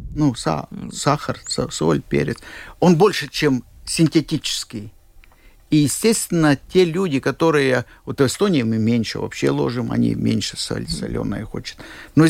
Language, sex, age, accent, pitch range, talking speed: Russian, male, 50-69, native, 120-185 Hz, 125 wpm